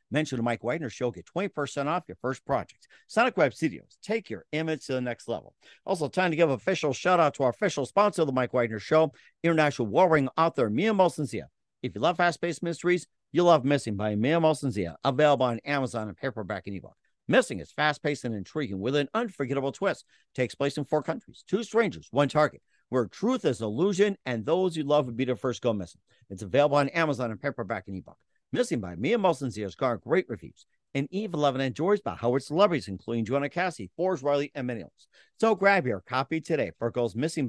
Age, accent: 50-69, American